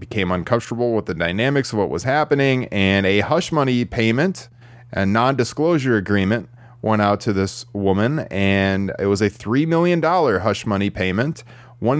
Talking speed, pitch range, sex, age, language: 165 wpm, 100-130 Hz, male, 30-49, English